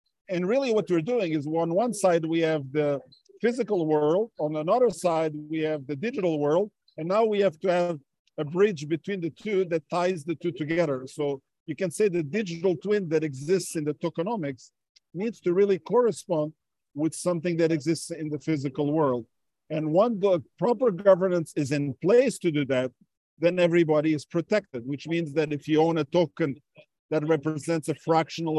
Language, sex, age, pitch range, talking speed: English, male, 50-69, 155-185 Hz, 185 wpm